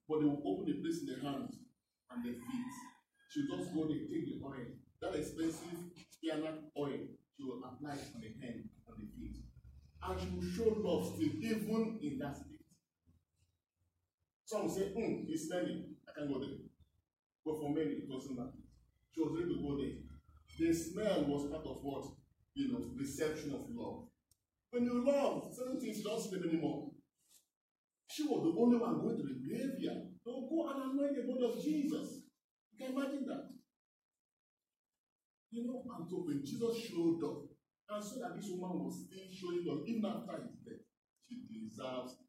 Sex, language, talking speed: male, English, 180 wpm